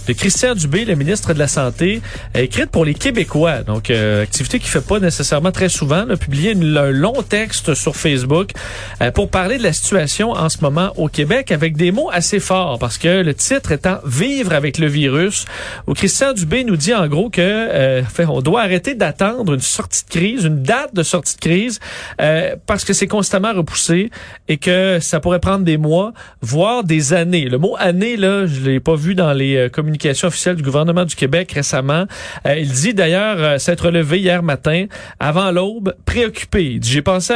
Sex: male